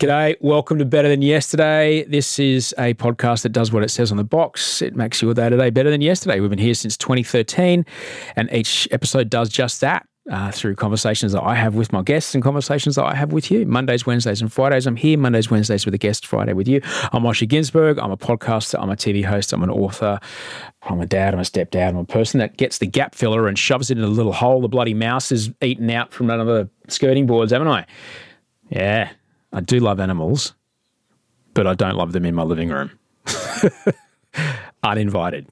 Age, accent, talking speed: 30-49, Australian, 220 wpm